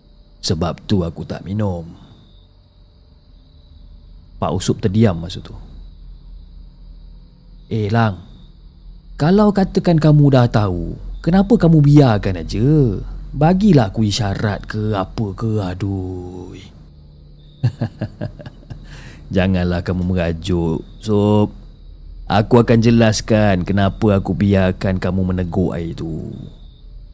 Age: 30-49